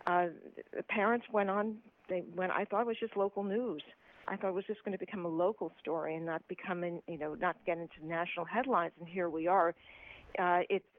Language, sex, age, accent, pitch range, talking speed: English, female, 50-69, American, 175-225 Hz, 230 wpm